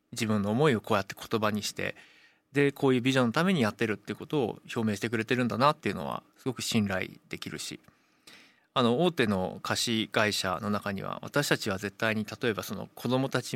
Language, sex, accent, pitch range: Japanese, male, native, 110-165 Hz